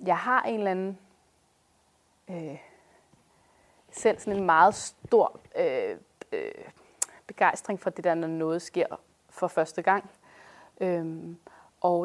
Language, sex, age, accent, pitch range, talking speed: Danish, female, 30-49, native, 175-215 Hz, 125 wpm